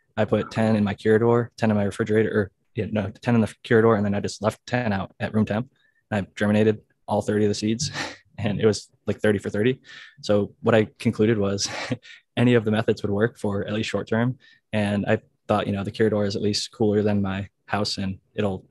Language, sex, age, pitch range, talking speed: English, male, 20-39, 105-115 Hz, 235 wpm